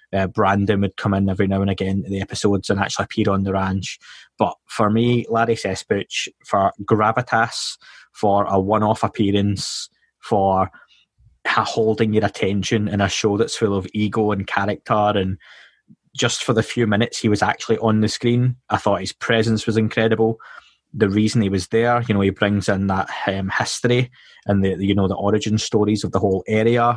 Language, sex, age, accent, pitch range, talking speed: English, male, 20-39, British, 100-110 Hz, 185 wpm